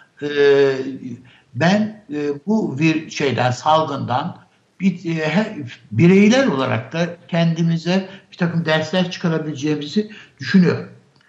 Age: 60-79